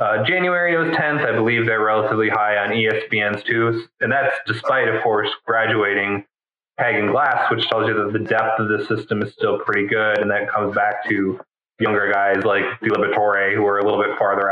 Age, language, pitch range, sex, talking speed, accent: 20-39, English, 105-120 Hz, male, 205 wpm, American